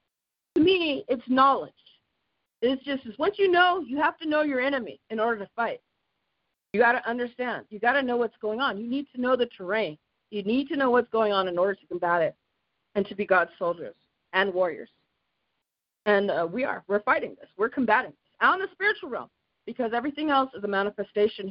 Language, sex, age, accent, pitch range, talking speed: English, female, 40-59, American, 185-255 Hz, 210 wpm